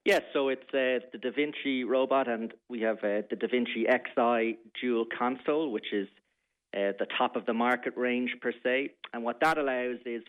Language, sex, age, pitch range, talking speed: English, male, 40-59, 110-130 Hz, 200 wpm